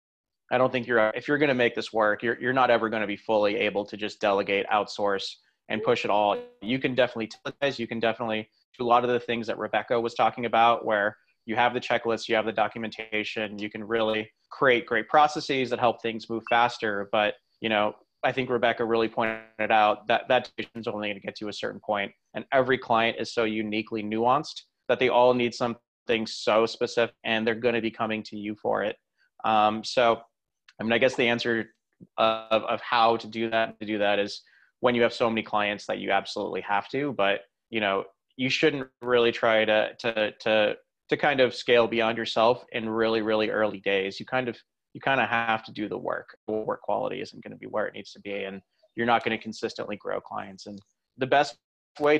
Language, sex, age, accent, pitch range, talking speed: English, male, 30-49, American, 110-120 Hz, 225 wpm